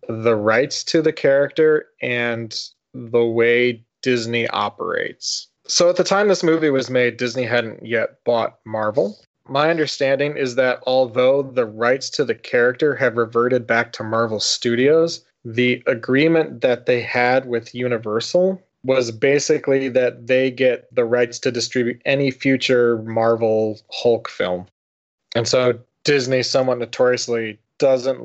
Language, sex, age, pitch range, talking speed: English, male, 20-39, 115-135 Hz, 140 wpm